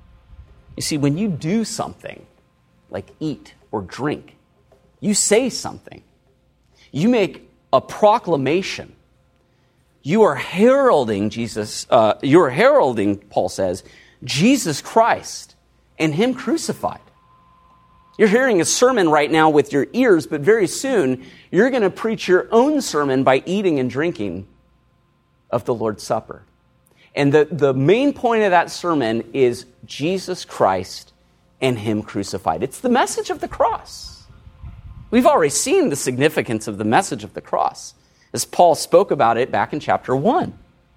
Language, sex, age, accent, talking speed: English, male, 40-59, American, 145 wpm